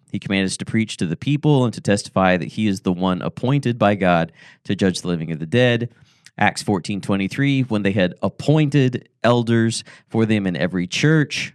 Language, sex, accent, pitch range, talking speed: English, male, American, 95-130 Hz, 195 wpm